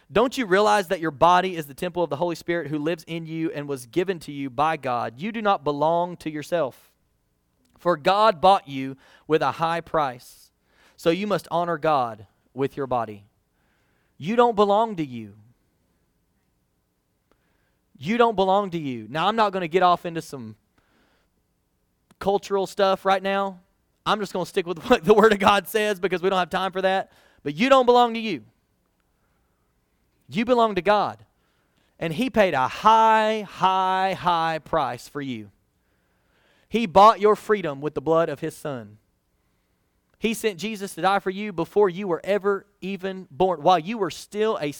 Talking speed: 180 wpm